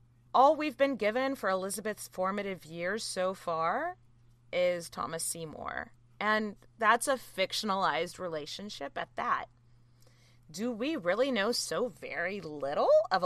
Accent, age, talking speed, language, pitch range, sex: American, 20-39, 125 wpm, English, 150-240 Hz, female